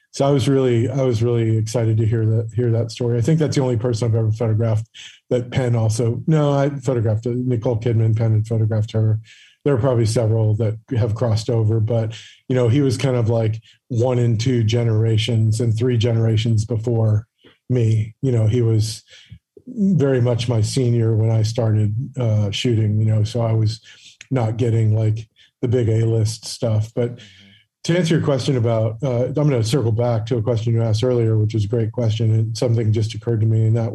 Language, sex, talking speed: English, male, 205 wpm